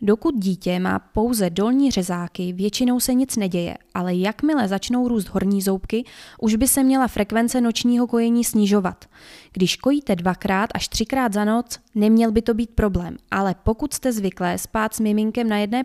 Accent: native